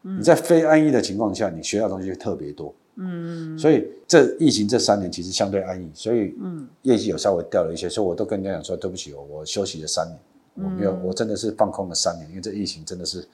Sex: male